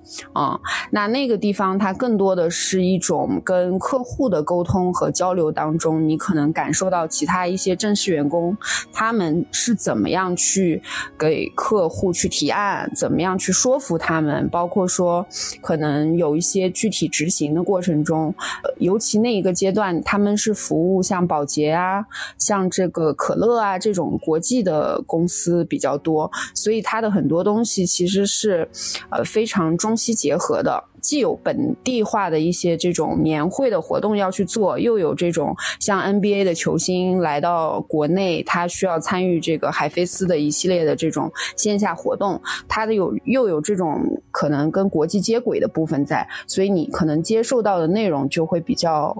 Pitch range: 165-210 Hz